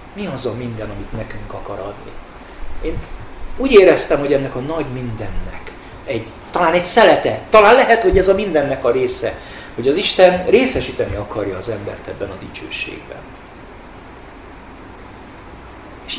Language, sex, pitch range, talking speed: Hungarian, male, 110-145 Hz, 145 wpm